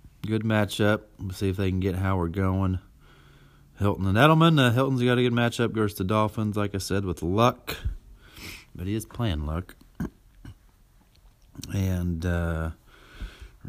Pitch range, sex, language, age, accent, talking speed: 95-125 Hz, male, English, 40-59, American, 160 wpm